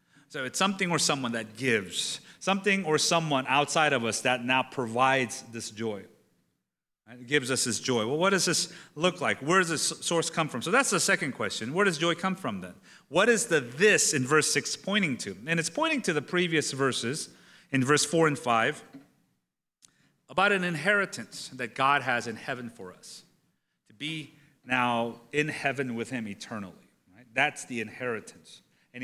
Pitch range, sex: 135-180 Hz, male